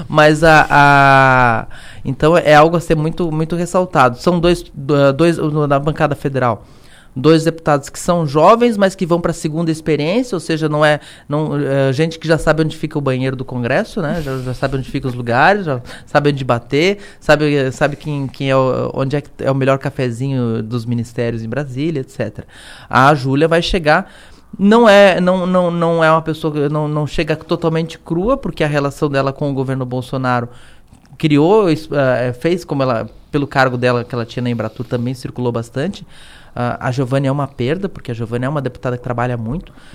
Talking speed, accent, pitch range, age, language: 195 wpm, Brazilian, 130-170 Hz, 20-39, Portuguese